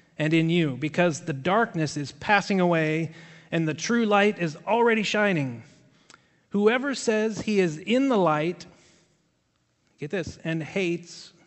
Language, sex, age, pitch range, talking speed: English, male, 40-59, 140-175 Hz, 140 wpm